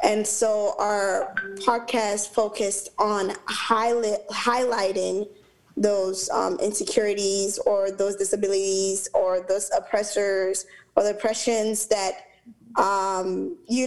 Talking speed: 100 wpm